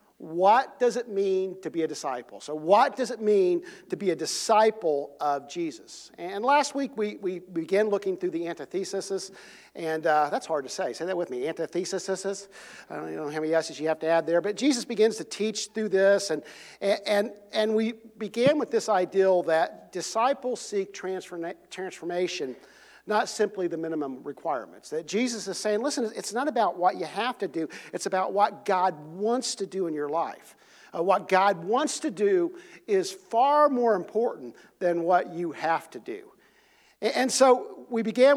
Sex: male